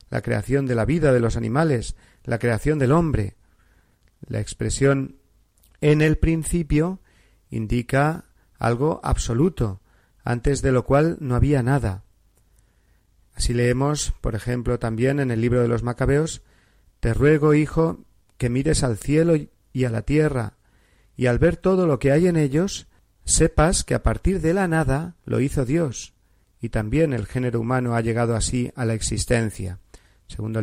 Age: 40-59